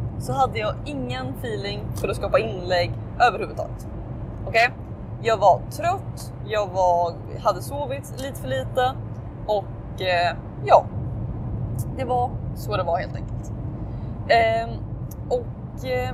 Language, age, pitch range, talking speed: Swedish, 20-39, 110-130 Hz, 110 wpm